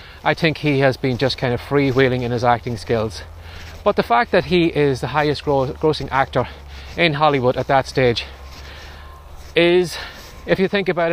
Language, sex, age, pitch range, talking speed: English, male, 30-49, 100-160 Hz, 180 wpm